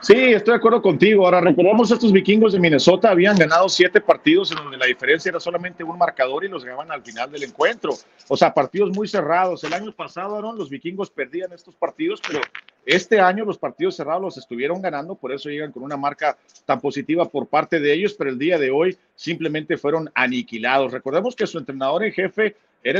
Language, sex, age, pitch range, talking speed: Spanish, male, 40-59, 140-185 Hz, 210 wpm